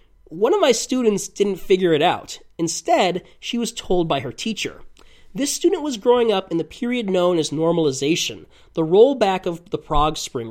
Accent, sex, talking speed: American, male, 185 wpm